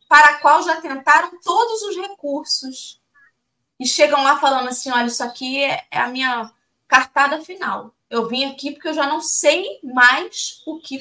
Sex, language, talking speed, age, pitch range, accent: female, Portuguese, 175 wpm, 20-39, 210-335 Hz, Brazilian